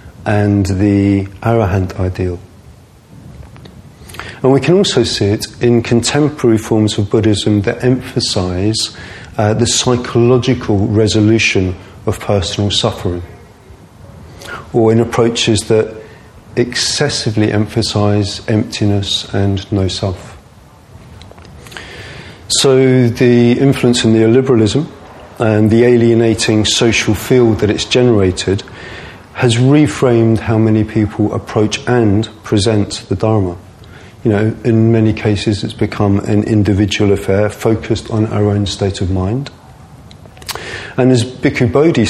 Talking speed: 110 wpm